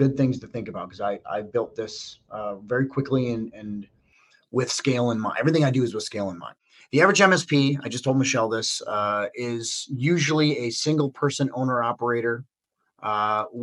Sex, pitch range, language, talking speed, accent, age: male, 115-145 Hz, English, 195 wpm, American, 30-49